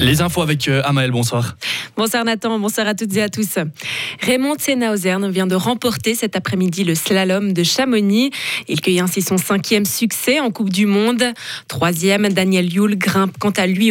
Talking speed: 180 wpm